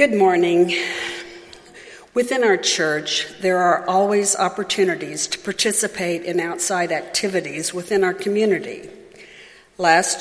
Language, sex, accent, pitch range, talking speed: English, female, American, 170-200 Hz, 105 wpm